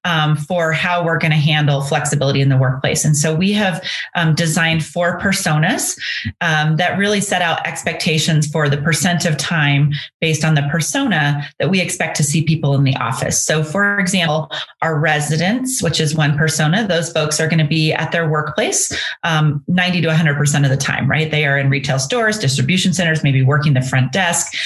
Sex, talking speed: female, 200 wpm